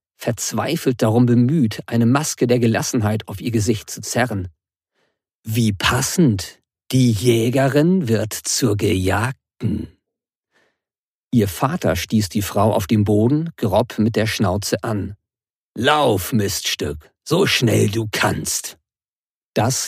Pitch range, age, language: 105-125 Hz, 50-69, German